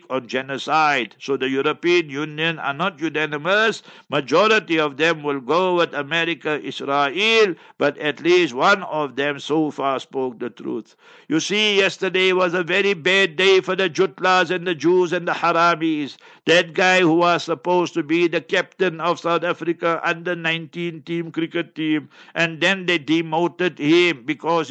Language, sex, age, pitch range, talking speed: English, male, 60-79, 155-180 Hz, 165 wpm